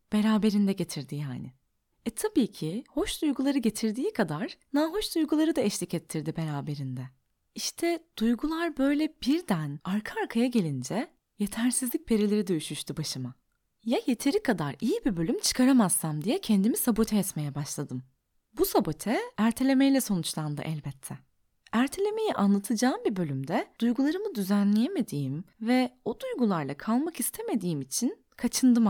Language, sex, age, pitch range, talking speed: Turkish, female, 20-39, 160-265 Hz, 120 wpm